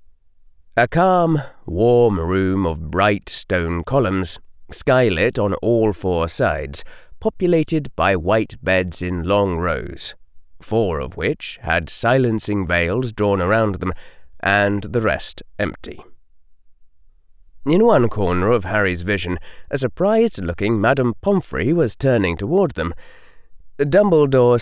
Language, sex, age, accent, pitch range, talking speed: English, male, 30-49, British, 90-120 Hz, 115 wpm